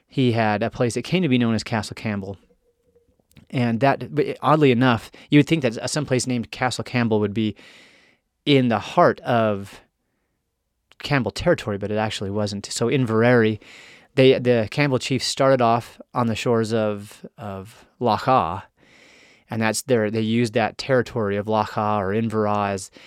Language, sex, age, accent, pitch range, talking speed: English, male, 30-49, American, 105-130 Hz, 165 wpm